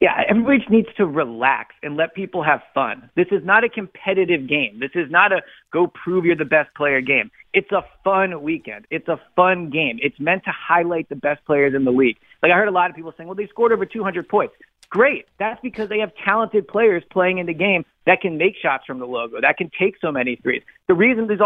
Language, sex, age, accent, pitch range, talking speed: English, male, 40-59, American, 150-200 Hz, 230 wpm